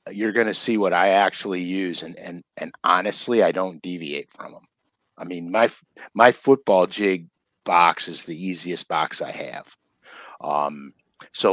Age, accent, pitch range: 50-69, American, 90-115 Hz